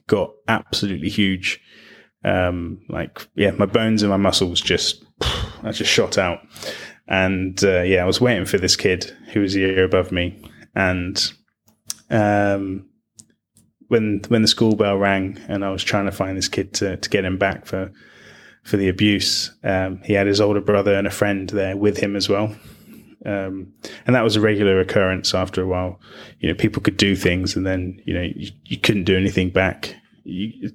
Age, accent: 20-39, British